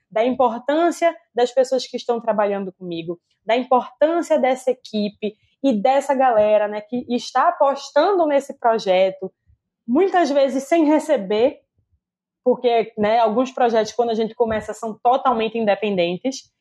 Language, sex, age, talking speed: Portuguese, female, 20-39, 130 wpm